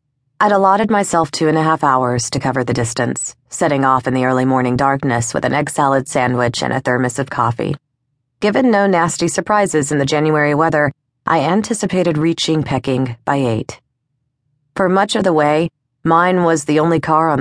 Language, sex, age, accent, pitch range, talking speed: English, female, 30-49, American, 125-150 Hz, 185 wpm